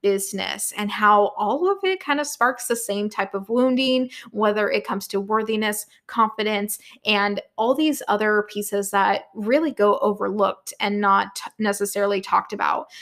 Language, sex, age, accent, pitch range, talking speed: English, female, 20-39, American, 200-240 Hz, 155 wpm